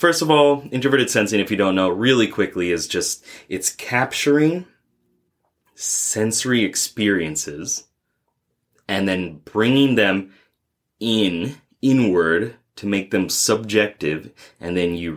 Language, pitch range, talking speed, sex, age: English, 85-110 Hz, 120 wpm, male, 30-49